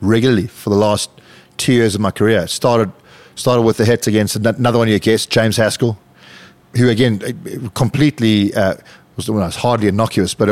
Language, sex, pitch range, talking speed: English, male, 105-120 Hz, 195 wpm